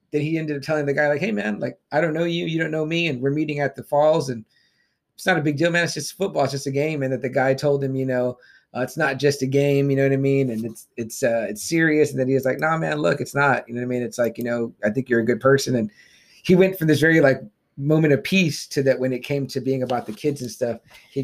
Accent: American